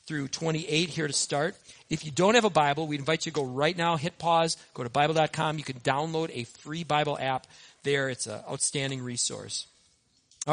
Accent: American